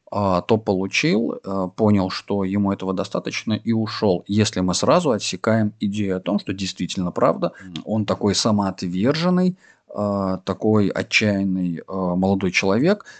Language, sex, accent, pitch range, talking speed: Russian, male, native, 95-110 Hz, 120 wpm